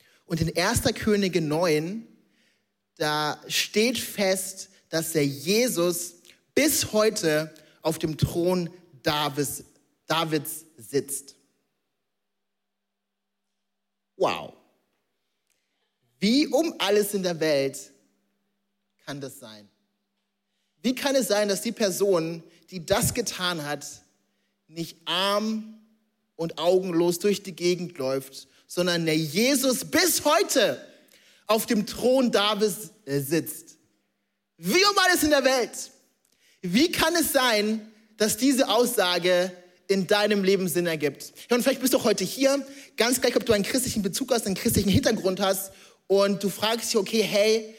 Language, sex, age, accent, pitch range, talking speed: German, male, 30-49, German, 165-225 Hz, 125 wpm